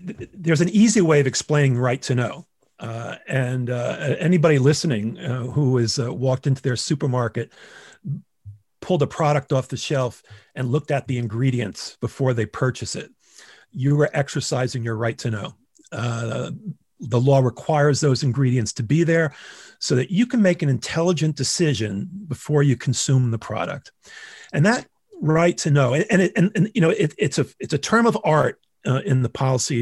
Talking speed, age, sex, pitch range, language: 180 wpm, 40-59, male, 125-160 Hz, English